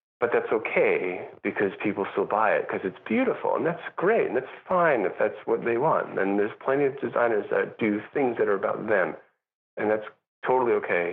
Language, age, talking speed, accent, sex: English, 40-59, 205 wpm, American, male